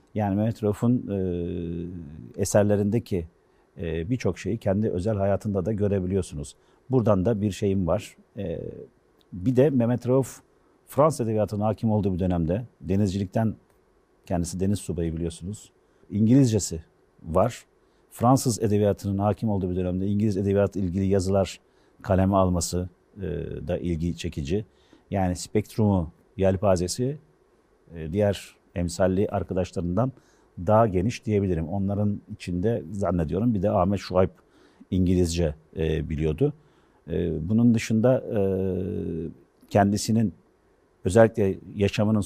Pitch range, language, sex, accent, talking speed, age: 90-105 Hz, Turkish, male, native, 110 wpm, 50-69